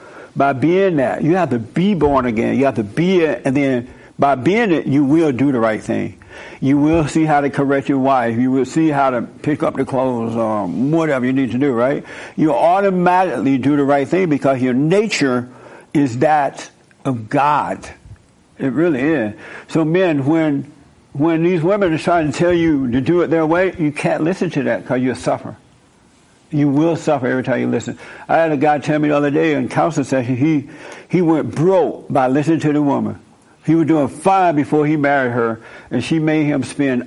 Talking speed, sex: 210 wpm, male